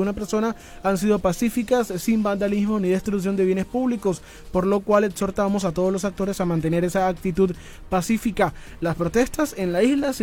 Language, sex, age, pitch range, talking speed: Spanish, male, 20-39, 180-220 Hz, 180 wpm